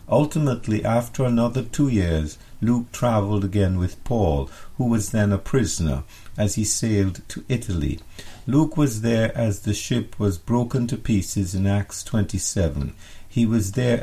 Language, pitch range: English, 90-115 Hz